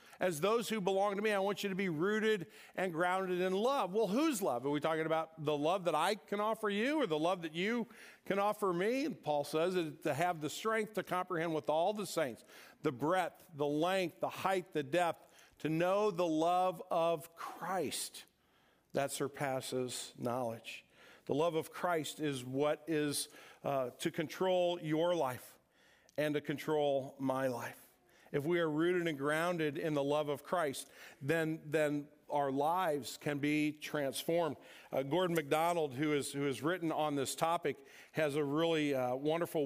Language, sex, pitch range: English, male, 150-185 Hz